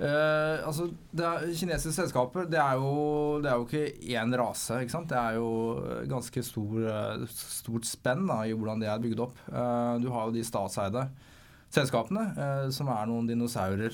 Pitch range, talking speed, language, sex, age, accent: 120-145 Hz, 185 wpm, English, male, 20-39, Norwegian